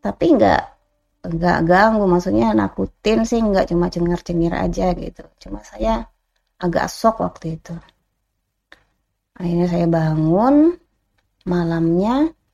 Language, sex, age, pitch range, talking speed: Indonesian, female, 20-39, 170-225 Hz, 105 wpm